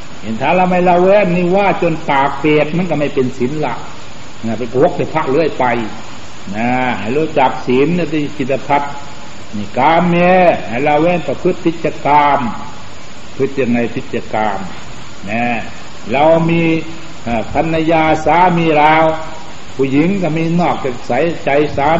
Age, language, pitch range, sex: 60-79, Thai, 125-160 Hz, male